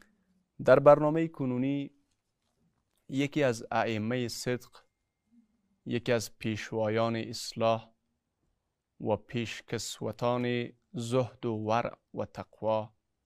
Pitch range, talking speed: 105-120 Hz, 80 wpm